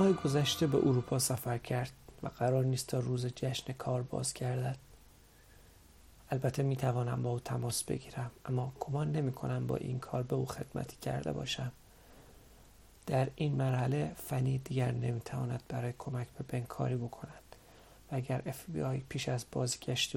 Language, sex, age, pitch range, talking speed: Persian, male, 40-59, 120-135 Hz, 145 wpm